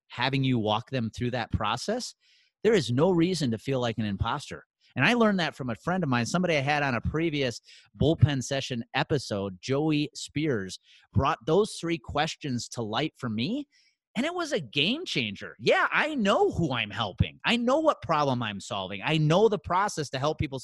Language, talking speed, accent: English, 200 wpm, American